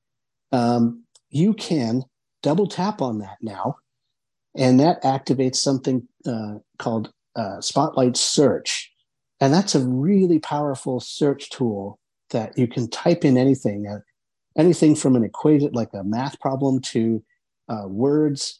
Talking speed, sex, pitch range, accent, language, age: 135 wpm, male, 115-140 Hz, American, English, 50-69